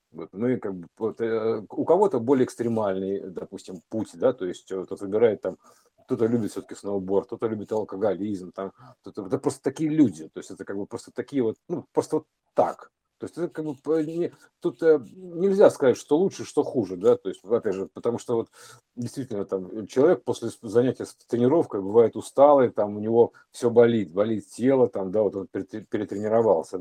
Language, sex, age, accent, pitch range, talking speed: Russian, male, 50-69, native, 110-155 Hz, 180 wpm